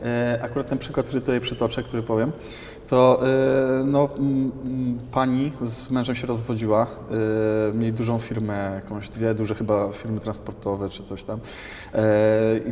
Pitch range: 110-130 Hz